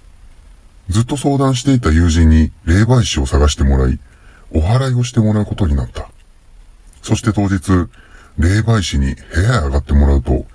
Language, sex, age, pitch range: Japanese, female, 40-59, 75-100 Hz